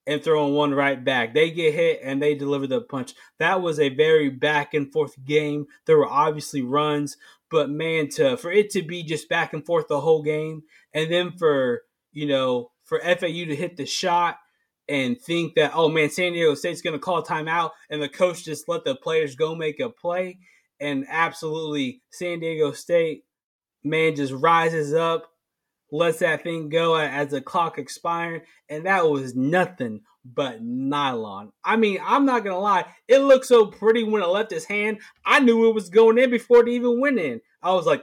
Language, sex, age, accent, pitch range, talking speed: English, male, 20-39, American, 150-205 Hz, 195 wpm